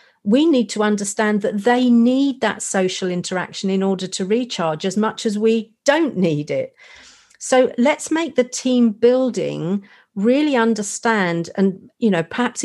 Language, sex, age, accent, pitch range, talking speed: English, female, 50-69, British, 180-230 Hz, 155 wpm